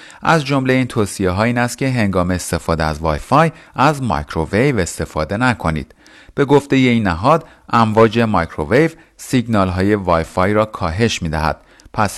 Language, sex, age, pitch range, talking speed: Persian, male, 40-59, 85-125 Hz, 160 wpm